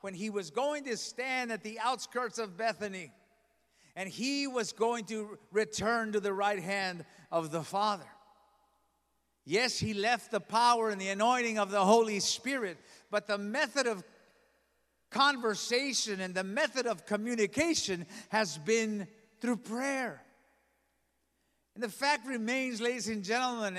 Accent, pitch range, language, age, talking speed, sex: American, 140-230 Hz, English, 50-69, 145 wpm, male